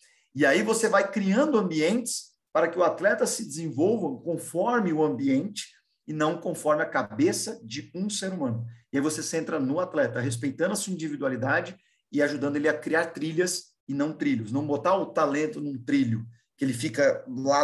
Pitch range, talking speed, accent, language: 130-205 Hz, 180 wpm, Brazilian, Portuguese